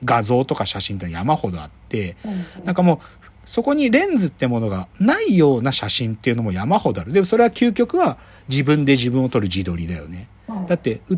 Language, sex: Japanese, male